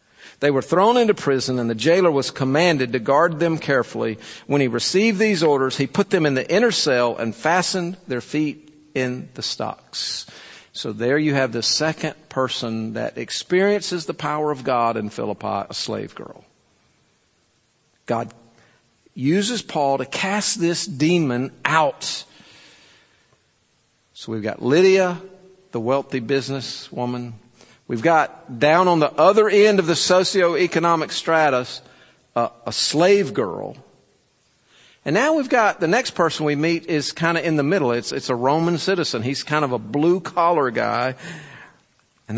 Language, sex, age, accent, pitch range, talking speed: English, male, 50-69, American, 125-170 Hz, 155 wpm